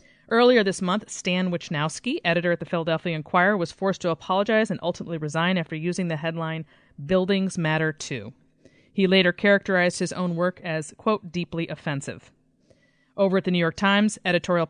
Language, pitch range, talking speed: English, 155-195 Hz, 165 wpm